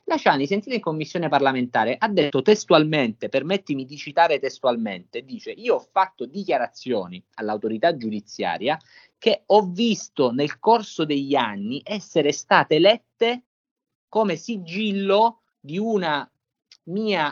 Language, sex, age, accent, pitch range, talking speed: Italian, male, 30-49, native, 135-200 Hz, 120 wpm